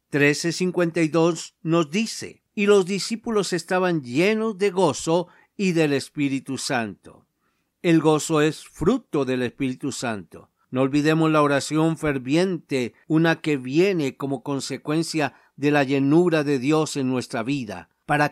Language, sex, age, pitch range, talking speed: Spanish, male, 50-69, 135-165 Hz, 130 wpm